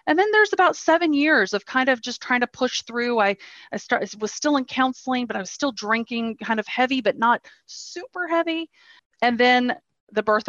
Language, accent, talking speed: English, American, 205 wpm